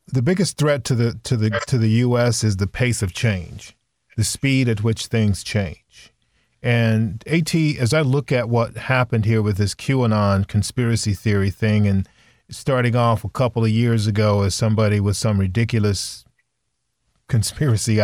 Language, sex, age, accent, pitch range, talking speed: English, male, 40-59, American, 105-125 Hz, 165 wpm